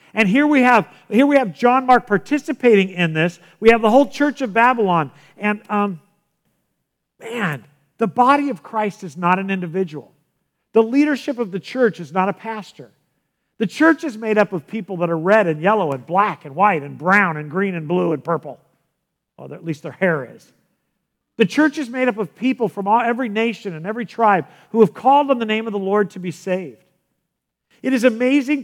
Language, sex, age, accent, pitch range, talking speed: English, male, 50-69, American, 165-225 Hz, 205 wpm